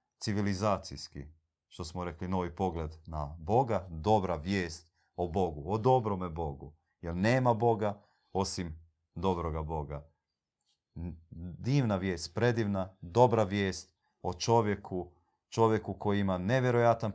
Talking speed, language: 110 wpm, Croatian